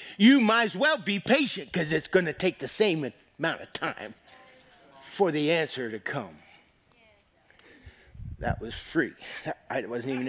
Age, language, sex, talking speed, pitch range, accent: 50-69, English, male, 155 wpm, 155-235 Hz, American